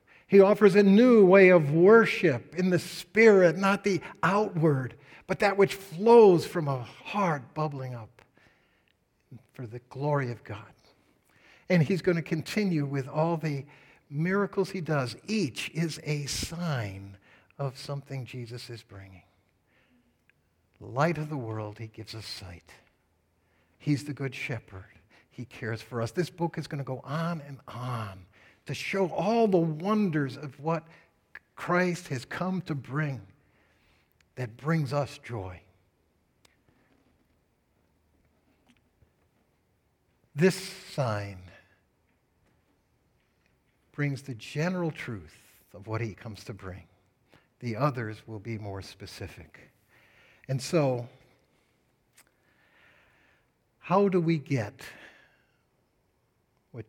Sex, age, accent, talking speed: male, 60-79, American, 120 wpm